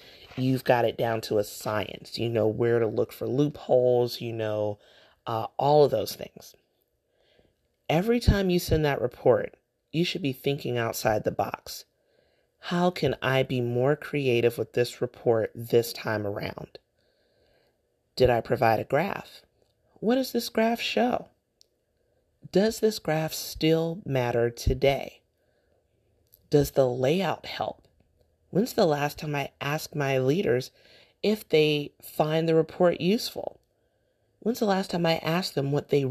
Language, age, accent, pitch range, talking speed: English, 30-49, American, 130-185 Hz, 150 wpm